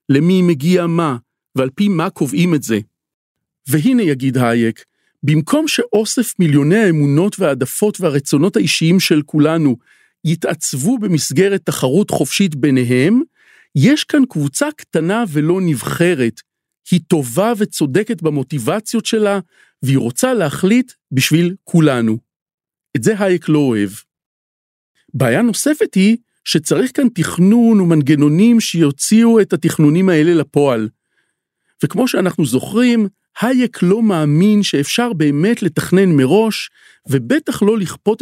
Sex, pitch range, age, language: male, 145-215 Hz, 40-59, Hebrew